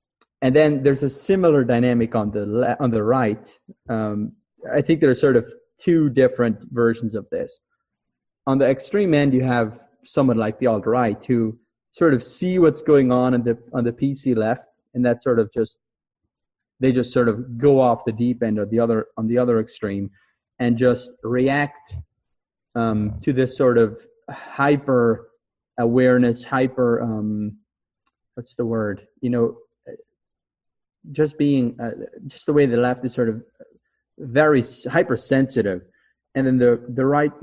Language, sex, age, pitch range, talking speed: English, male, 30-49, 115-140 Hz, 165 wpm